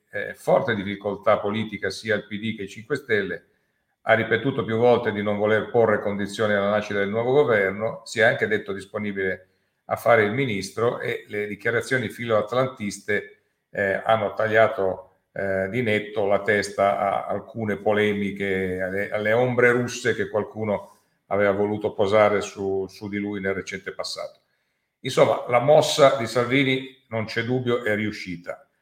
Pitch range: 100-120 Hz